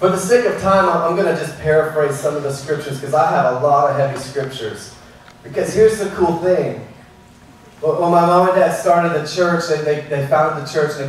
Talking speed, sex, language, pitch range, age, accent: 220 wpm, male, English, 140-170 Hz, 30-49, American